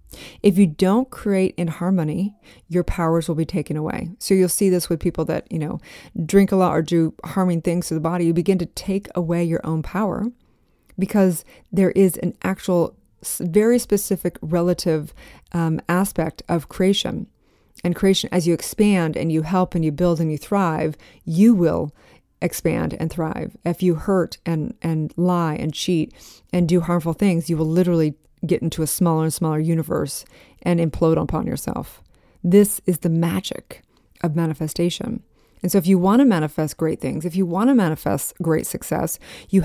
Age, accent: 30-49, American